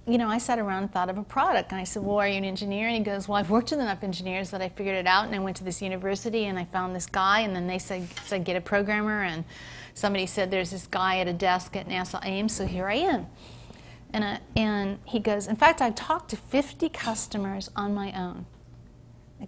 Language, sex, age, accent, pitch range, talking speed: English, female, 40-59, American, 185-220 Hz, 255 wpm